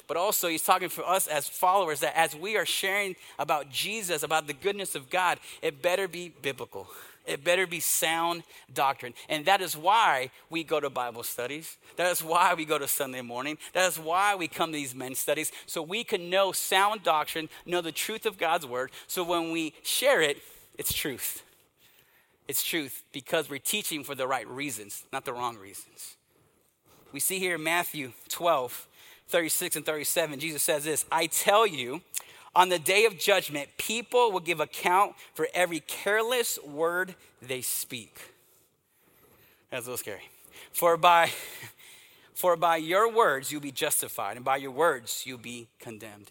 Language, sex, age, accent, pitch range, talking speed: English, male, 30-49, American, 140-180 Hz, 175 wpm